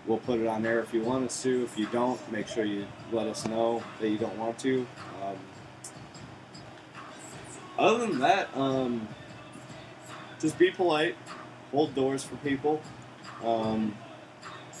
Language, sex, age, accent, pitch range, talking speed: English, male, 20-39, American, 115-145 Hz, 150 wpm